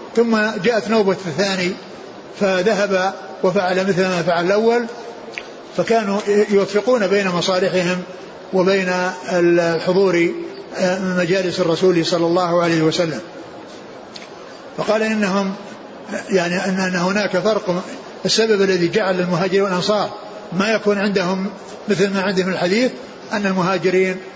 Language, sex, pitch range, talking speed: Arabic, male, 180-210 Hz, 105 wpm